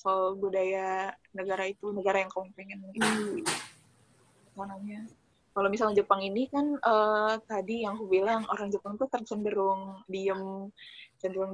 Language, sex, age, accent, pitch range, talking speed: Indonesian, female, 10-29, native, 195-220 Hz, 135 wpm